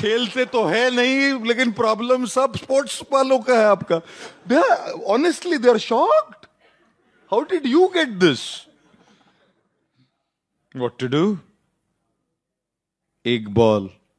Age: 30-49